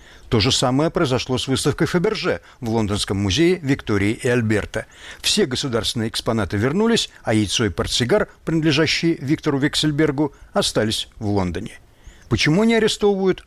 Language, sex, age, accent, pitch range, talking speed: Russian, male, 60-79, native, 105-160 Hz, 135 wpm